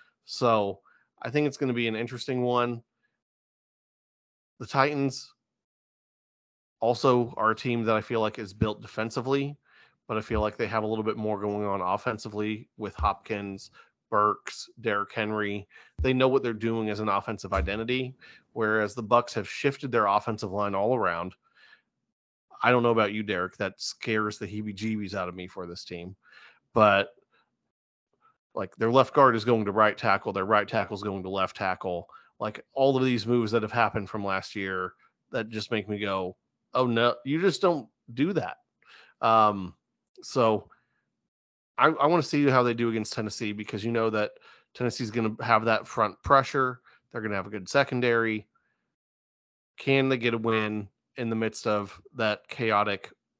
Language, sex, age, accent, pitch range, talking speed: English, male, 30-49, American, 105-120 Hz, 180 wpm